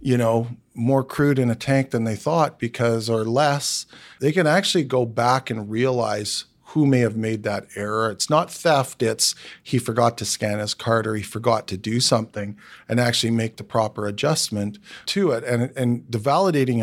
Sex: male